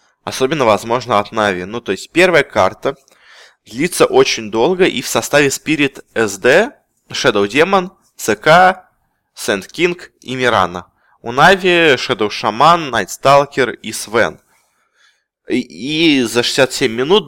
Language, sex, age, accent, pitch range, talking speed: Russian, male, 20-39, native, 110-145 Hz, 130 wpm